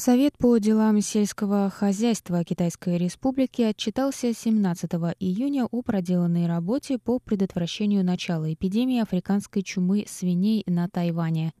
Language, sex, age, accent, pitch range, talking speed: Russian, female, 20-39, native, 175-220 Hz, 115 wpm